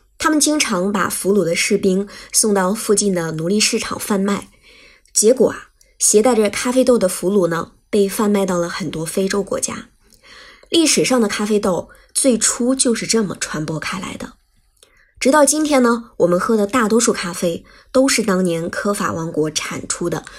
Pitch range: 180-240 Hz